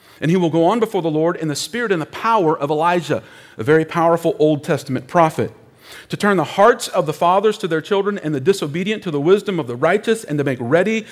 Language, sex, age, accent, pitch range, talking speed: English, male, 40-59, American, 150-200 Hz, 245 wpm